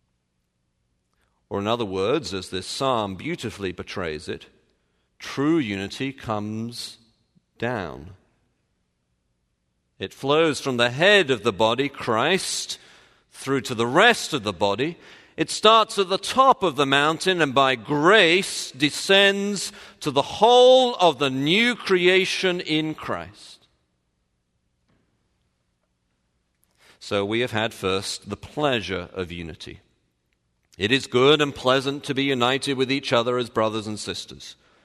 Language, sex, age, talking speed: English, male, 50-69, 130 wpm